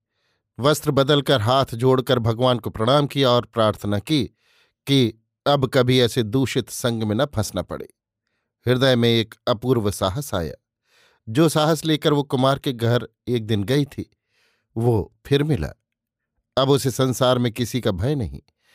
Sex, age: male, 50-69